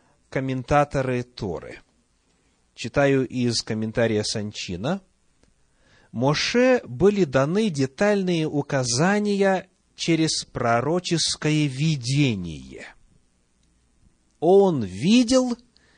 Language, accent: Russian, native